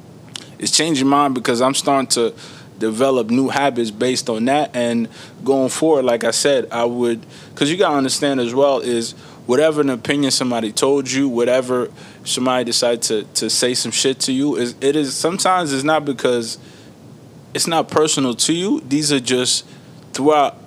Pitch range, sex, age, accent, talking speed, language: 125-150 Hz, male, 20-39, American, 175 wpm, English